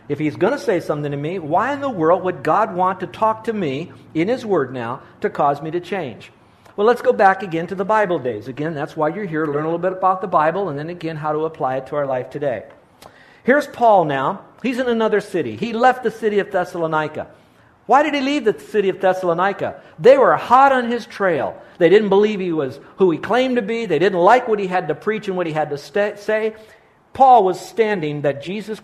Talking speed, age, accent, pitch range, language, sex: 245 wpm, 50-69, American, 155-220 Hz, English, male